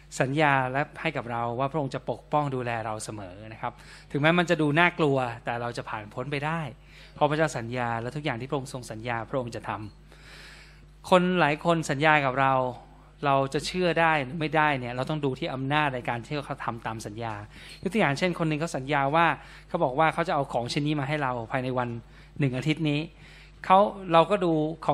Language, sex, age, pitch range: Thai, male, 20-39, 140-170 Hz